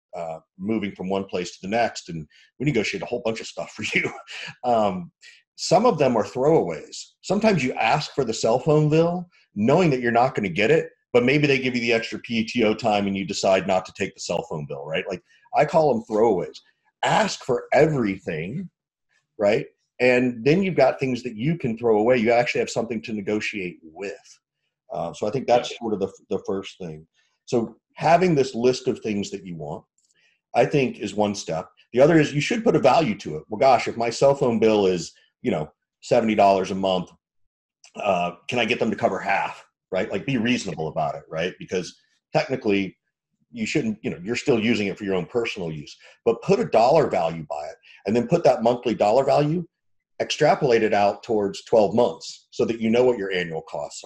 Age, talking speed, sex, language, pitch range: 40-59, 215 wpm, male, English, 100-150 Hz